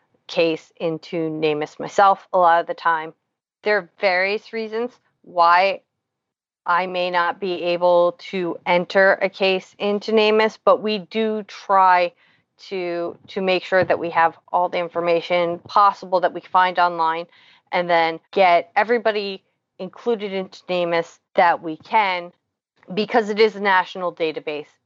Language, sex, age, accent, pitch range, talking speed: English, female, 30-49, American, 170-195 Hz, 145 wpm